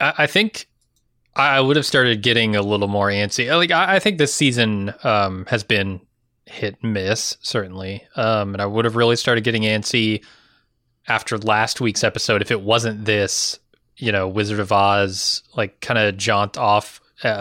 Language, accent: English, American